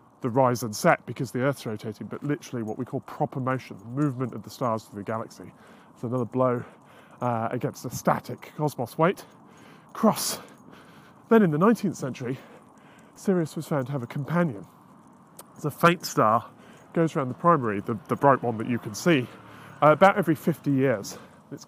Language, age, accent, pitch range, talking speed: English, 30-49, British, 125-170 Hz, 185 wpm